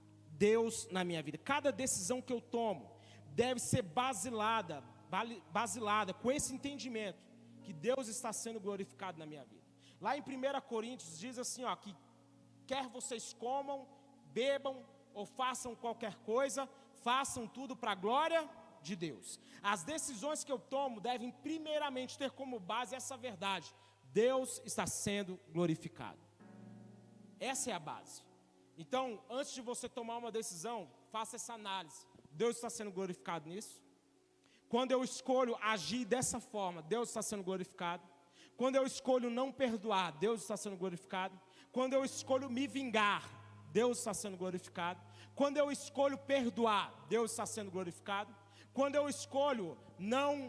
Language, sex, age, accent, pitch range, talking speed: Portuguese, male, 40-59, Brazilian, 195-260 Hz, 145 wpm